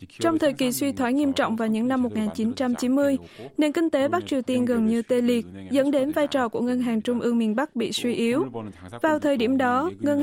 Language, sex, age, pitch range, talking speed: Vietnamese, female, 20-39, 230-285 Hz, 235 wpm